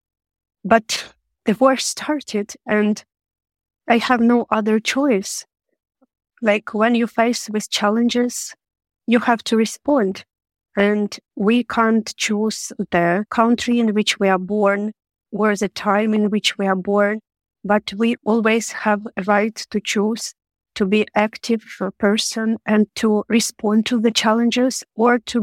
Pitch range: 205-230 Hz